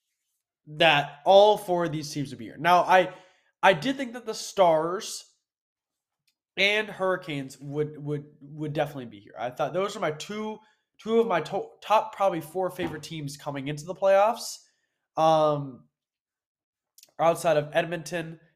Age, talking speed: 20-39, 155 wpm